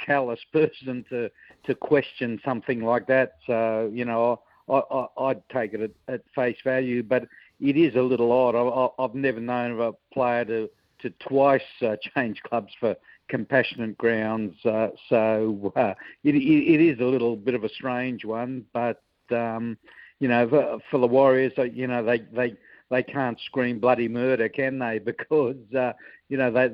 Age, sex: 60-79, male